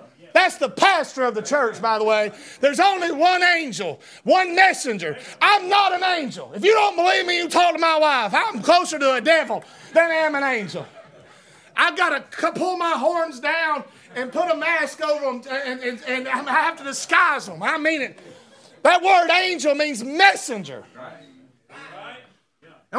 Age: 30-49